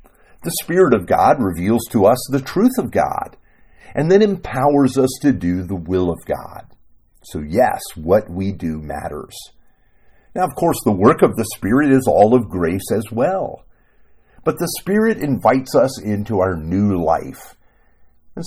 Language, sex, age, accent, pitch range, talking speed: English, male, 50-69, American, 95-145 Hz, 165 wpm